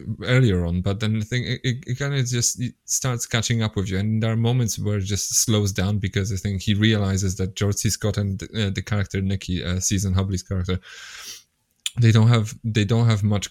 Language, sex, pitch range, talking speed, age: English, male, 100-115 Hz, 235 wpm, 20-39